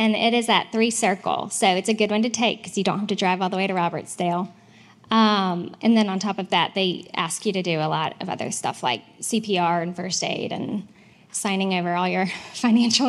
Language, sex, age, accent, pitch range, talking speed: English, female, 10-29, American, 195-230 Hz, 240 wpm